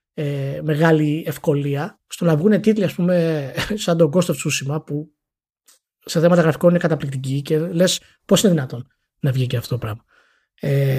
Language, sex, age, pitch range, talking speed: Greek, male, 20-39, 150-205 Hz, 175 wpm